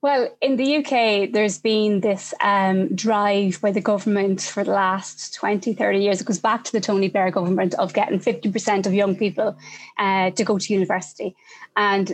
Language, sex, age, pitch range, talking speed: English, female, 20-39, 195-220 Hz, 190 wpm